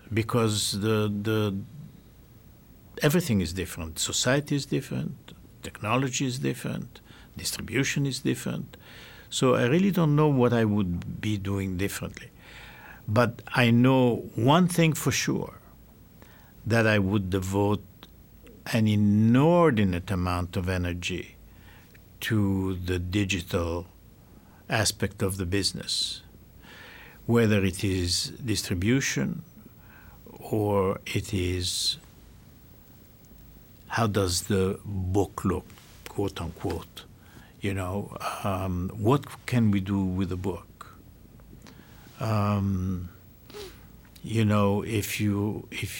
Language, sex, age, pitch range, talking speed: English, male, 60-79, 95-115 Hz, 100 wpm